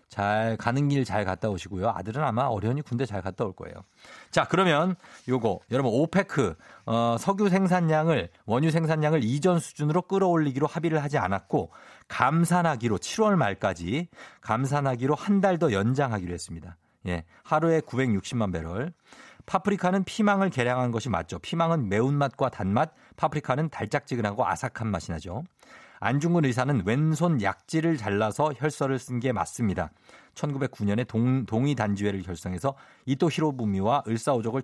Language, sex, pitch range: Korean, male, 105-160 Hz